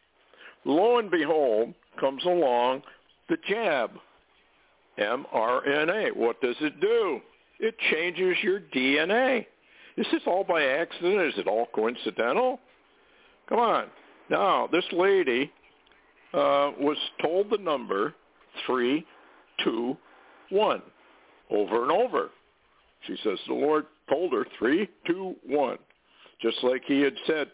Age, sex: 60-79, male